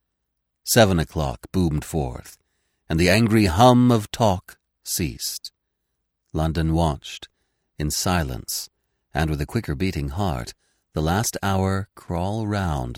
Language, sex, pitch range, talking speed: English, male, 75-110 Hz, 120 wpm